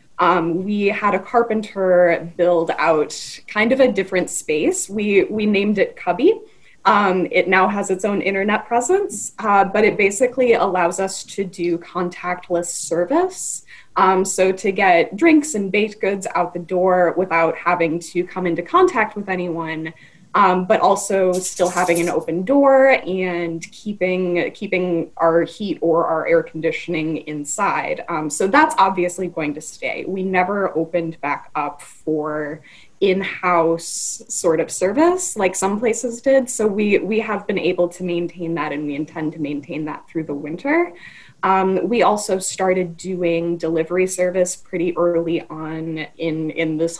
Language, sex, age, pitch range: English, female, 20-39, 165-205 Hz